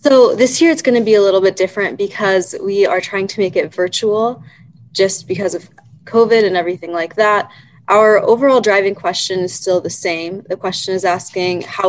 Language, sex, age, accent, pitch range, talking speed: English, female, 20-39, American, 175-195 Hz, 200 wpm